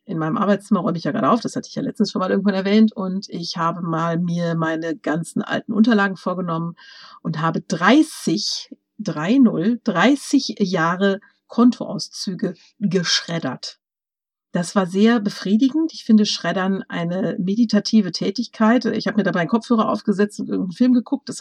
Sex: female